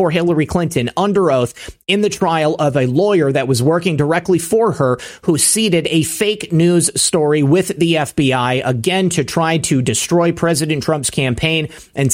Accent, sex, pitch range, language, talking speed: American, male, 135-175 Hz, English, 170 wpm